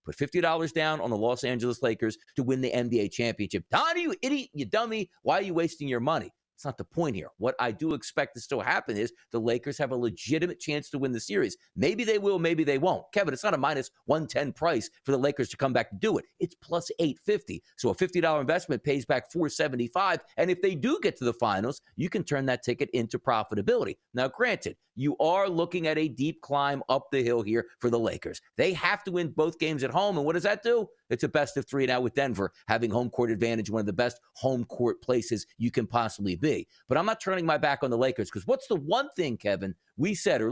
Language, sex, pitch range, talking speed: English, male, 125-180 Hz, 245 wpm